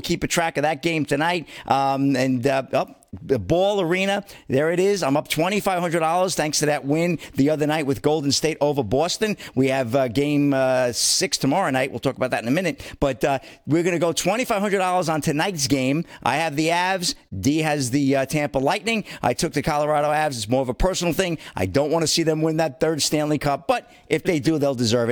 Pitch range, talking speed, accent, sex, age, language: 125-160 Hz, 230 wpm, American, male, 50-69, English